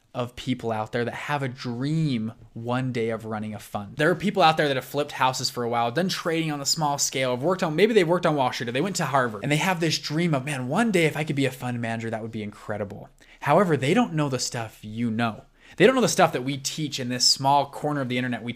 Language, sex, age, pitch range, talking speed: English, male, 20-39, 125-185 Hz, 290 wpm